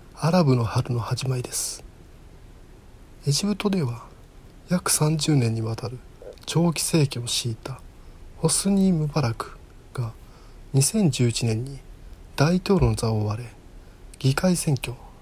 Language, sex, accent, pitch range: Japanese, male, native, 115-165 Hz